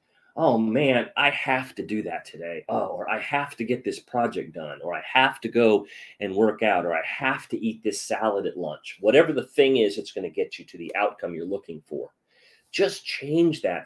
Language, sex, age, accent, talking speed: English, male, 30-49, American, 225 wpm